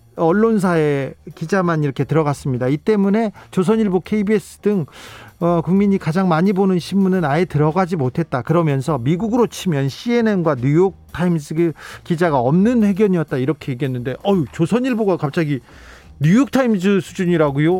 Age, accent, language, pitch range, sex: 40-59, native, Korean, 145-215 Hz, male